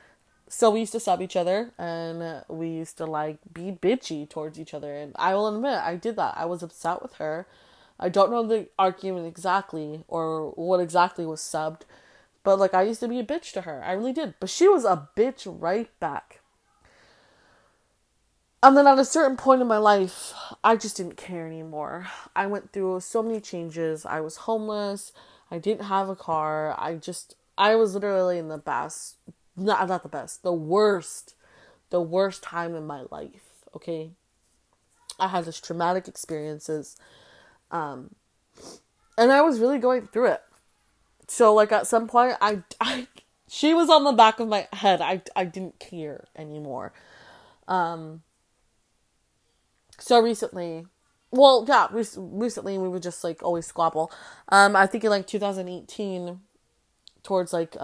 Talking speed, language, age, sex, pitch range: 170 wpm, English, 20-39, female, 165-220 Hz